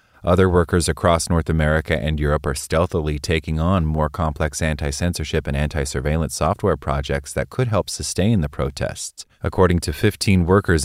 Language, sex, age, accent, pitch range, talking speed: English, male, 30-49, American, 75-95 Hz, 155 wpm